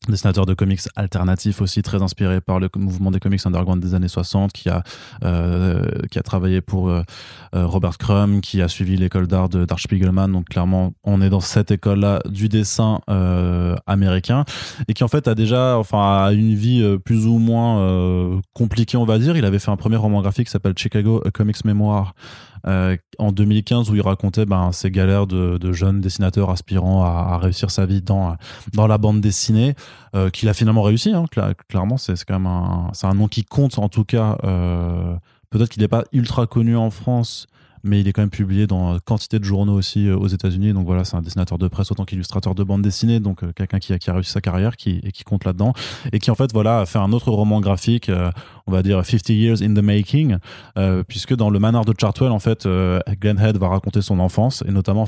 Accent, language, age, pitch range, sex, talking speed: French, French, 20-39, 95-110 Hz, male, 225 wpm